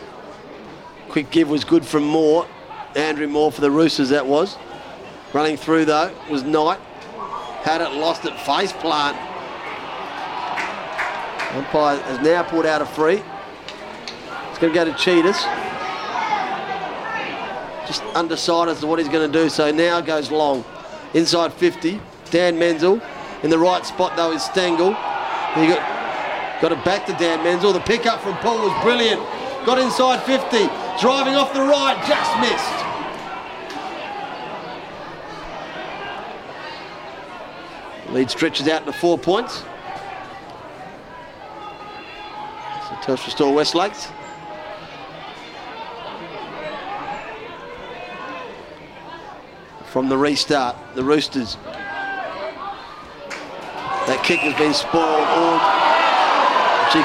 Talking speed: 110 wpm